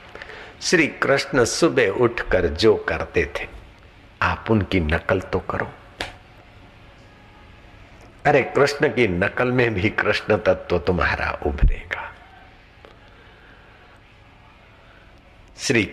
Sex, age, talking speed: male, 60-79, 85 wpm